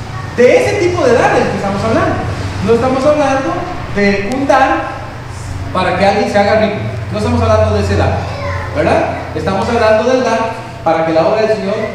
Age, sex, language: 40-59, male, Spanish